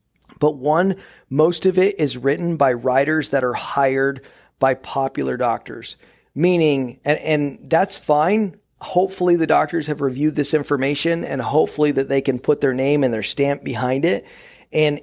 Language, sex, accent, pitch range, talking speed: English, male, American, 135-170 Hz, 165 wpm